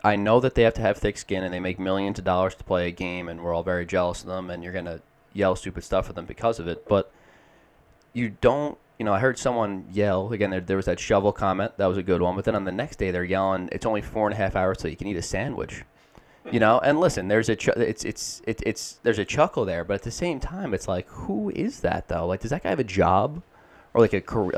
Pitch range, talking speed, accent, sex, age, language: 95-115 Hz, 285 wpm, American, male, 20-39, English